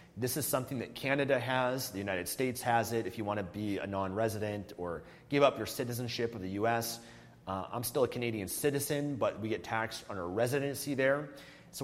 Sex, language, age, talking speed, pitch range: male, English, 30-49, 210 wpm, 110-135 Hz